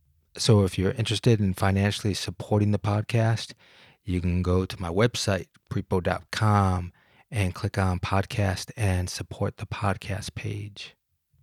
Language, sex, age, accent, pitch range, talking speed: English, male, 30-49, American, 90-105 Hz, 130 wpm